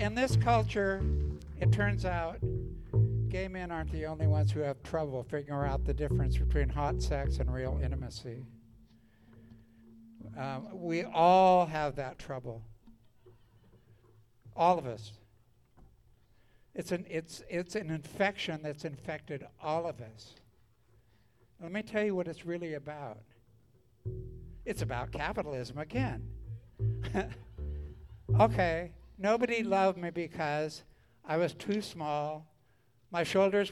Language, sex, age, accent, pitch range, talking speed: English, male, 60-79, American, 115-175 Hz, 115 wpm